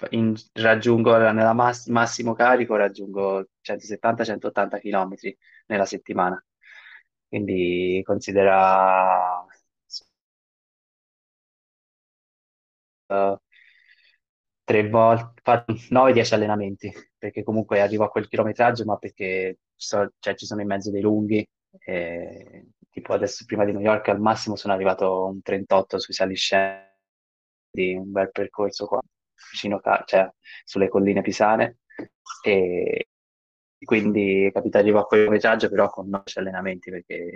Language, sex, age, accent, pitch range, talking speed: Italian, male, 20-39, native, 95-110 Hz, 110 wpm